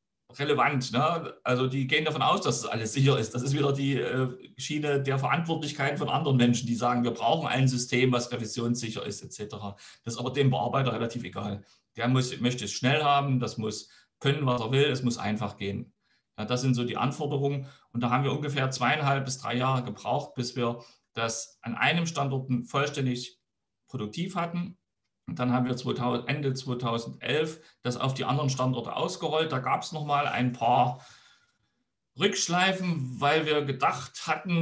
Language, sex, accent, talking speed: German, male, German, 175 wpm